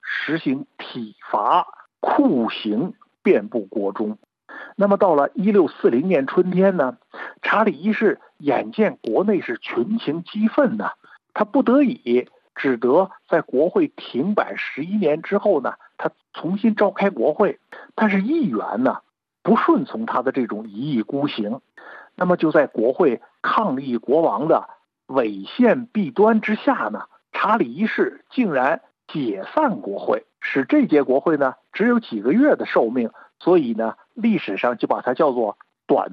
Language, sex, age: Chinese, male, 50-69